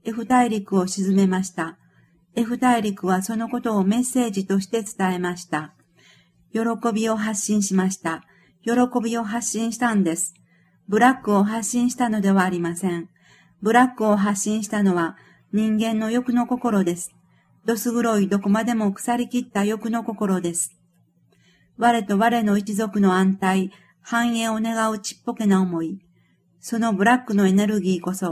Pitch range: 185-230 Hz